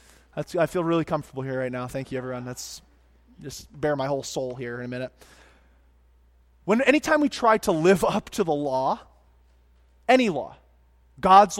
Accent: American